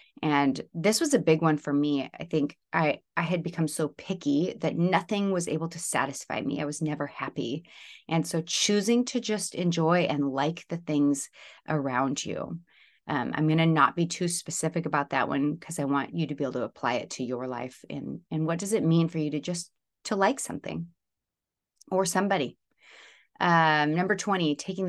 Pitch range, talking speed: 145-170 Hz, 200 wpm